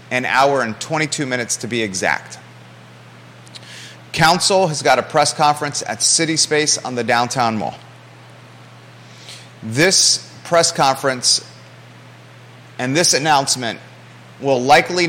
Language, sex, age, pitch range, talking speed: English, male, 30-49, 120-160 Hz, 115 wpm